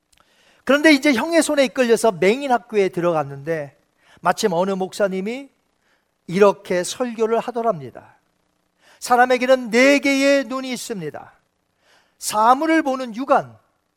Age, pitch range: 40-59, 190-270 Hz